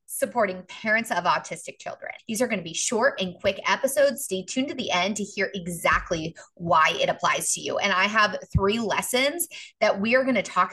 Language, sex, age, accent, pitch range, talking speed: English, female, 30-49, American, 180-270 Hz, 215 wpm